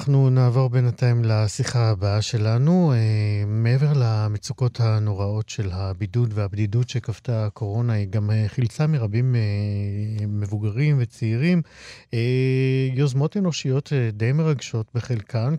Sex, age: male, 50-69